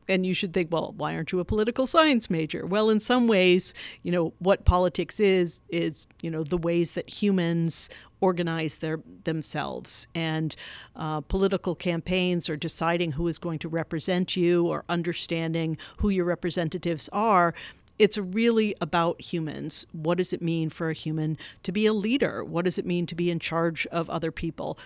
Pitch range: 165-185 Hz